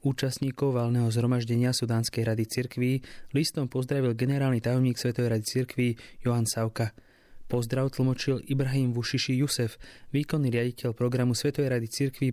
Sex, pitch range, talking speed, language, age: male, 120-135 Hz, 125 wpm, English, 20-39